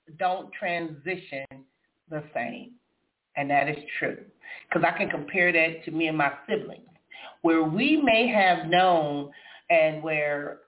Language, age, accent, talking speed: English, 40-59, American, 140 wpm